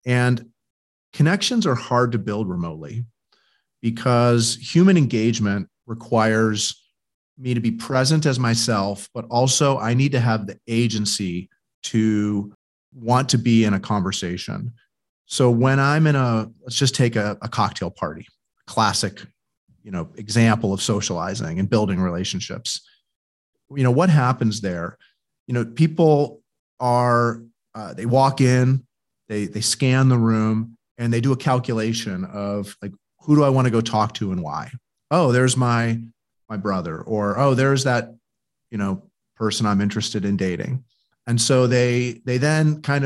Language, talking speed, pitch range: English, 155 wpm, 105-130 Hz